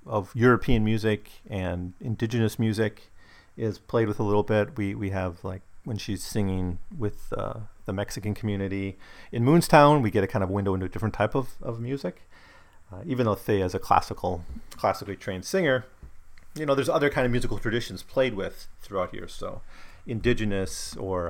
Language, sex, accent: English, male, American